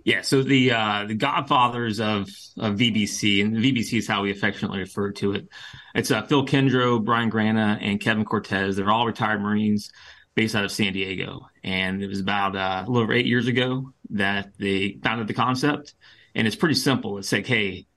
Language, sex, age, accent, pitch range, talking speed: English, male, 30-49, American, 100-120 Hz, 195 wpm